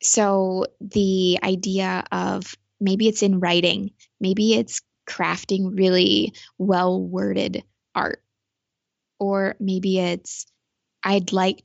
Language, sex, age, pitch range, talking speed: English, female, 20-39, 190-225 Hz, 100 wpm